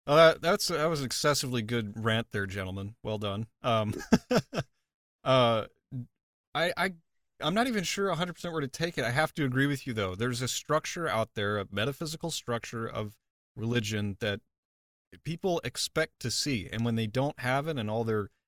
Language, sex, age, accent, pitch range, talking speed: English, male, 30-49, American, 110-150 Hz, 190 wpm